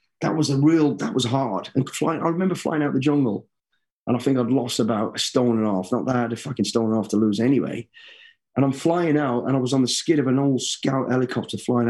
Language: English